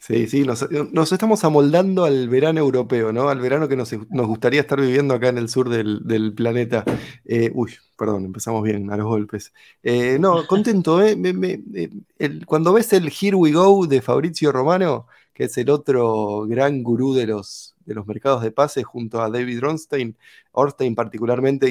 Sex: male